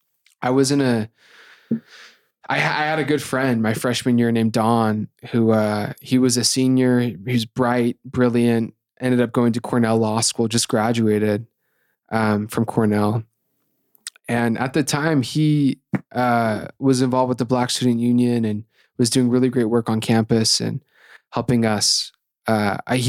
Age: 20-39